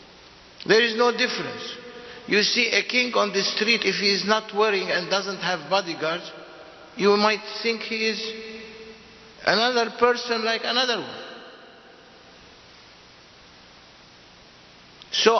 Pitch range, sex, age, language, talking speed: 170-230 Hz, male, 60-79, English, 120 wpm